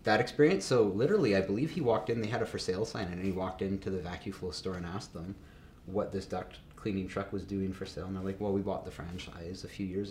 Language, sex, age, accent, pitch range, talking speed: English, male, 30-49, American, 90-105 Hz, 275 wpm